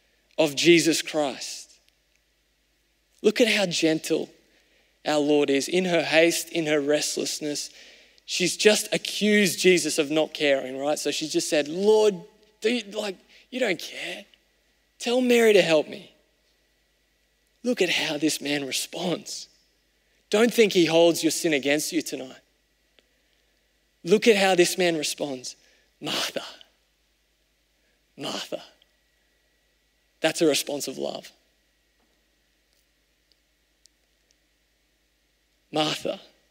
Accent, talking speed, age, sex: Australian, 110 wpm, 20-39, male